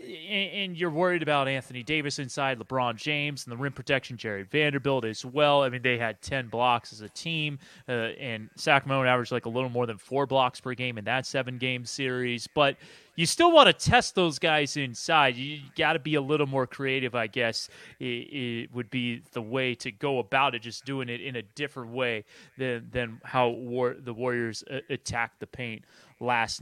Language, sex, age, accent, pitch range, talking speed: English, male, 30-49, American, 125-155 Hz, 195 wpm